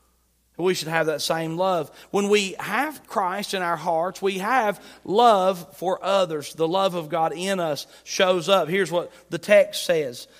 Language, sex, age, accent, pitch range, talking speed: English, male, 40-59, American, 165-205 Hz, 180 wpm